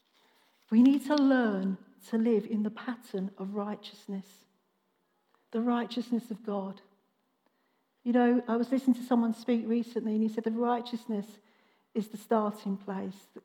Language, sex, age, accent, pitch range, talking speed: English, female, 50-69, British, 220-255 Hz, 150 wpm